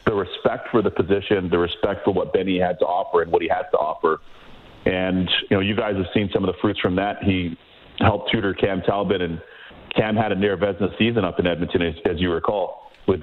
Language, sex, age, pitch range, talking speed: English, male, 40-59, 90-110 Hz, 230 wpm